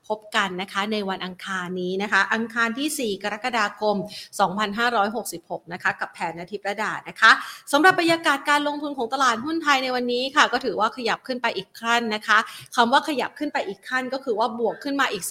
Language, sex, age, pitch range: Thai, female, 30-49, 195-245 Hz